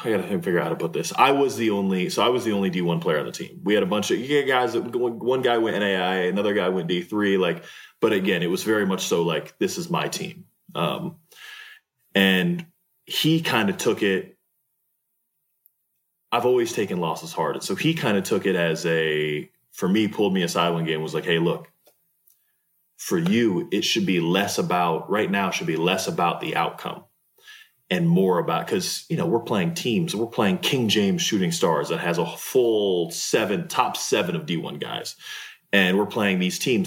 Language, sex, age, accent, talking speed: English, male, 20-39, American, 215 wpm